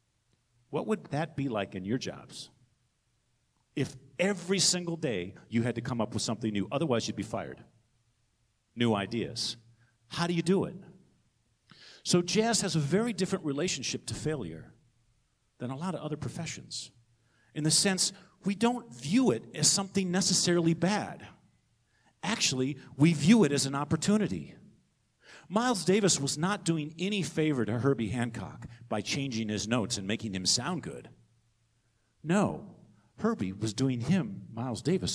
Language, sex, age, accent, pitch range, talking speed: English, male, 50-69, American, 115-165 Hz, 155 wpm